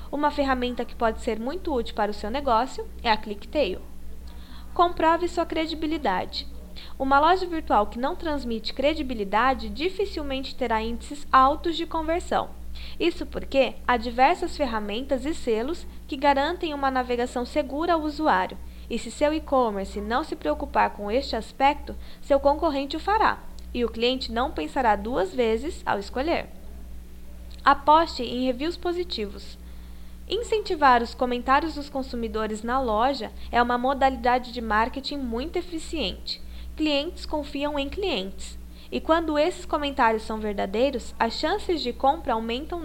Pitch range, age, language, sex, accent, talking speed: 220-300 Hz, 10-29, Portuguese, female, Brazilian, 140 wpm